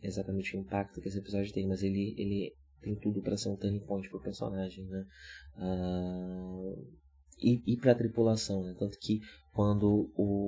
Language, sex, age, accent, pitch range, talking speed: Portuguese, male, 20-39, Brazilian, 95-100 Hz, 165 wpm